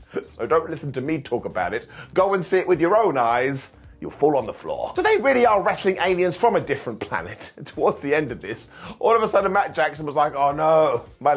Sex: male